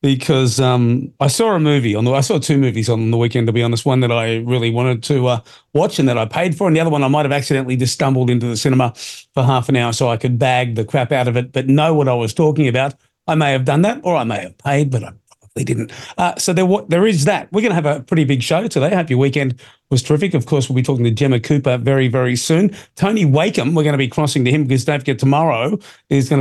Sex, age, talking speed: male, 40-59, 285 wpm